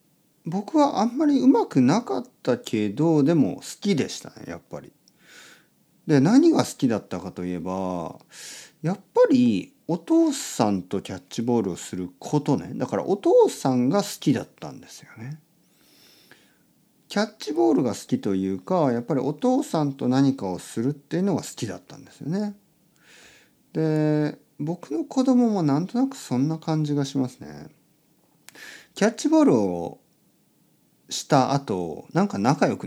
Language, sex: Japanese, male